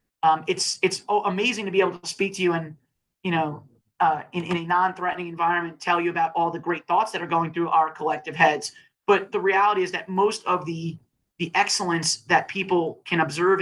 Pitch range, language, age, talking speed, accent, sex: 170-205 Hz, English, 30-49, 210 wpm, American, male